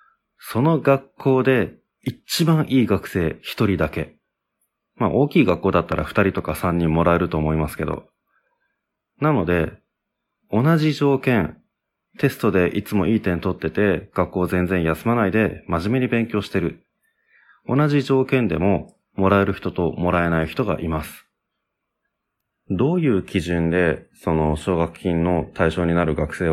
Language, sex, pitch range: Japanese, male, 85-120 Hz